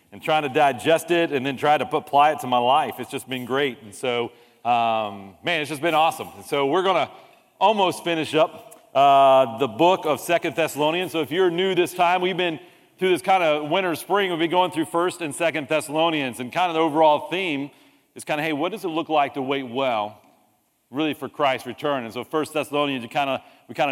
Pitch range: 130-155 Hz